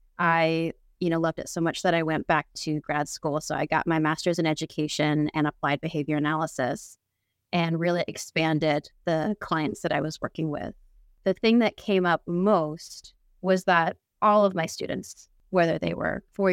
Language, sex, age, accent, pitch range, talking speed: English, female, 20-39, American, 150-180 Hz, 185 wpm